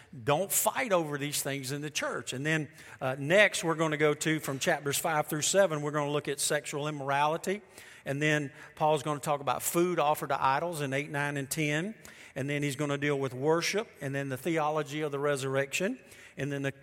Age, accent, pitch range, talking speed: 50-69, American, 140-170 Hz, 220 wpm